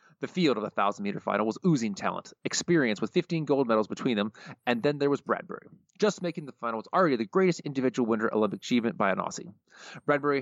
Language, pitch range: English, 110-165 Hz